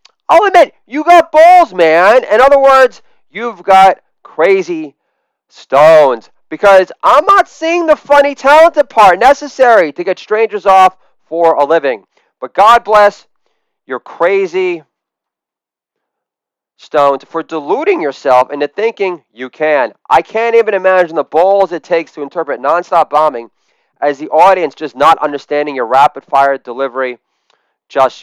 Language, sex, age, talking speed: English, male, 30-49, 135 wpm